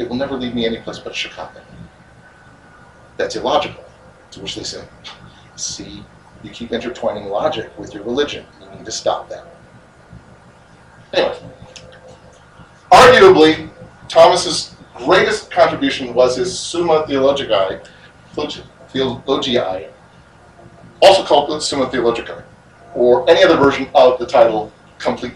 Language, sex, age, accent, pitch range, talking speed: English, male, 40-59, American, 100-145 Hz, 125 wpm